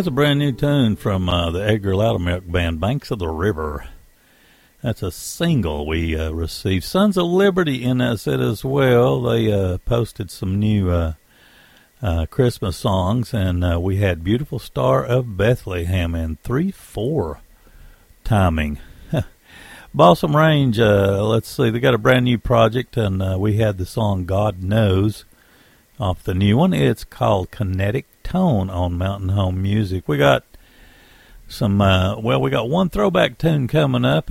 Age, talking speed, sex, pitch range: 50-69, 160 wpm, male, 95-130 Hz